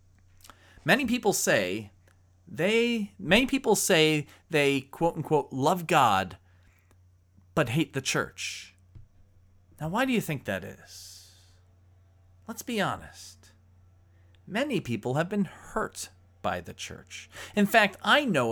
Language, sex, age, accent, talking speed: English, male, 40-59, American, 125 wpm